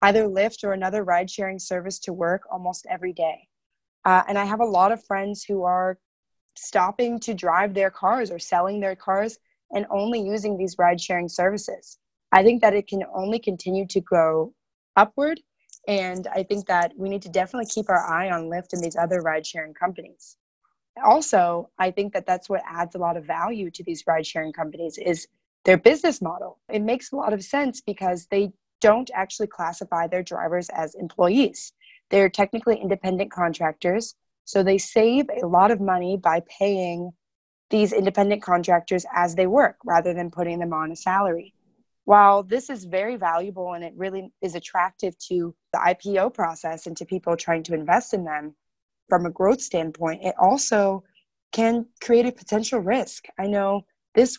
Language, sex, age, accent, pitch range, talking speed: English, female, 20-39, American, 175-205 Hz, 175 wpm